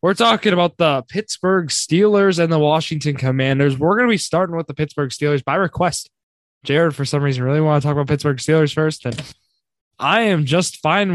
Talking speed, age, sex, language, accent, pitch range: 205 wpm, 20-39, male, English, American, 135-170 Hz